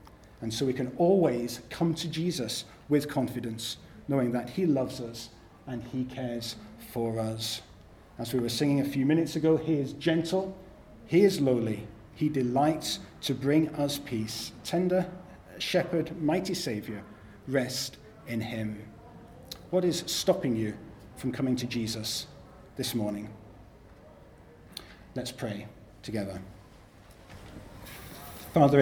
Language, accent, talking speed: English, British, 125 wpm